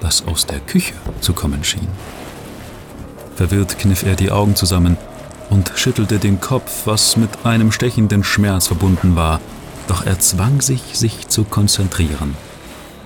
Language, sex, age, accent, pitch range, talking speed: German, male, 30-49, German, 95-120 Hz, 140 wpm